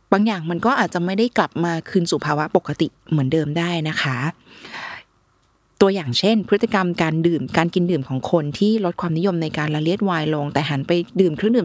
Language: Thai